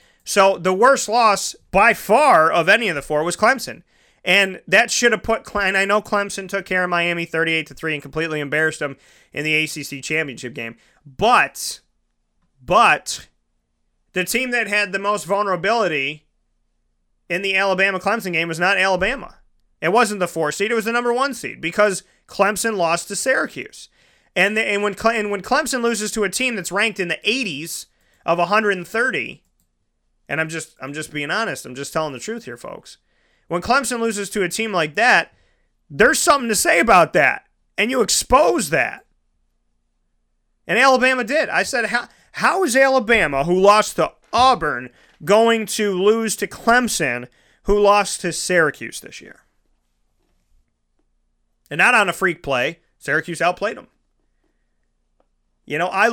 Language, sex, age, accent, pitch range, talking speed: English, male, 30-49, American, 155-220 Hz, 165 wpm